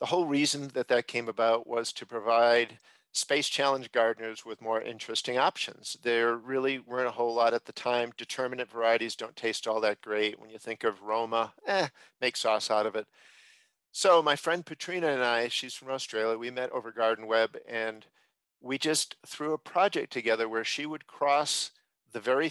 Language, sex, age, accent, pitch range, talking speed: English, male, 50-69, American, 115-140 Hz, 190 wpm